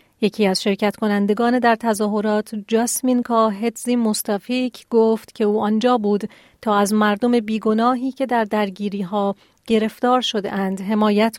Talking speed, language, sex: 130 wpm, Persian, female